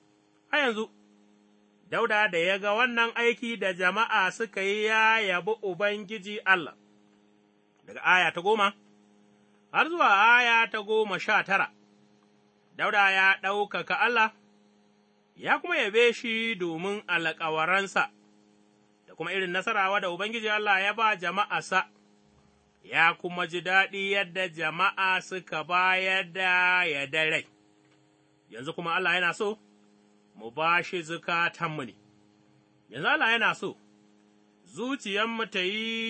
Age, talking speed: 30-49, 120 wpm